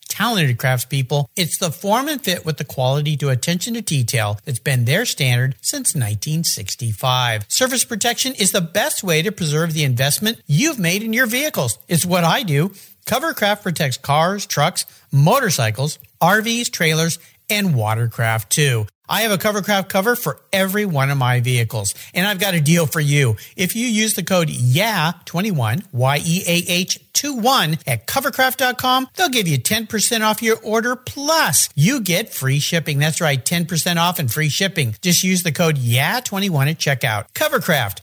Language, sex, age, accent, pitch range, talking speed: English, male, 50-69, American, 140-210 Hz, 165 wpm